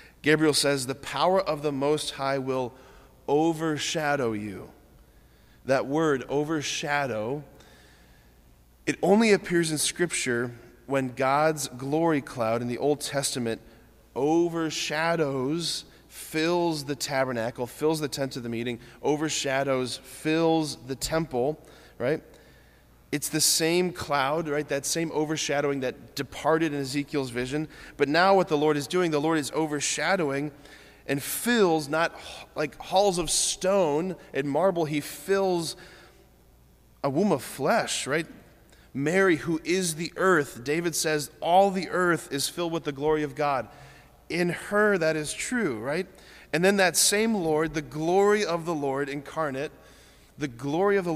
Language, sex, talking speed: English, male, 140 wpm